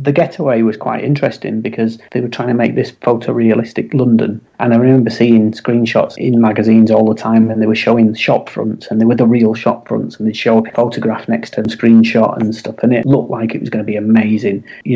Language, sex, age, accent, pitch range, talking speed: English, male, 40-59, British, 110-120 Hz, 235 wpm